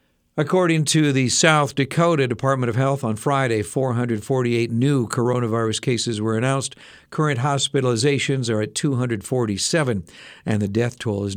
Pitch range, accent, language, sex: 115-145 Hz, American, Japanese, male